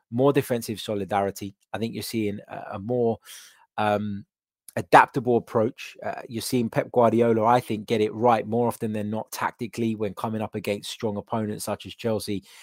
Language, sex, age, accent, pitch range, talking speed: English, male, 20-39, British, 105-130 Hz, 170 wpm